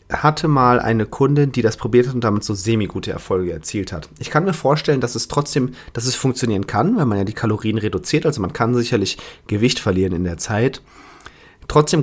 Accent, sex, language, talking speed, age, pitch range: German, male, German, 210 wpm, 30-49, 110-145 Hz